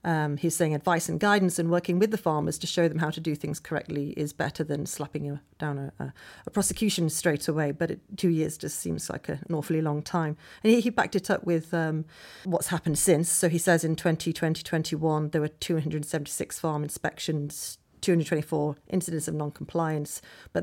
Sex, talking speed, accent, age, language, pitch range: female, 195 wpm, British, 40-59, English, 155-180 Hz